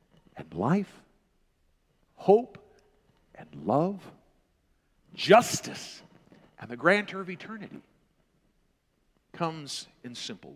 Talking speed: 80 wpm